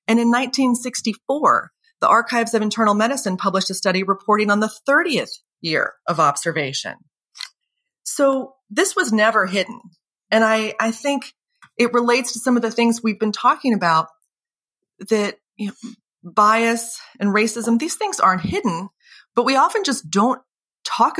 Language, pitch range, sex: English, 165-230 Hz, female